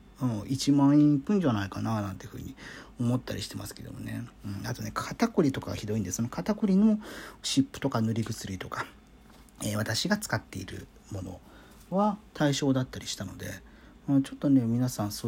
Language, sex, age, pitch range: Japanese, male, 40-59, 105-175 Hz